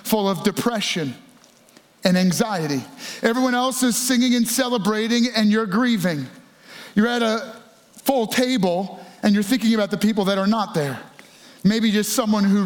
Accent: American